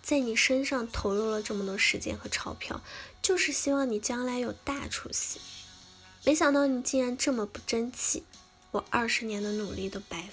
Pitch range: 195-265 Hz